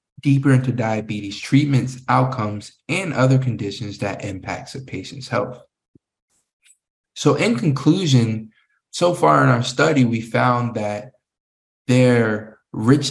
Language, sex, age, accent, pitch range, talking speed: English, male, 20-39, American, 105-130 Hz, 120 wpm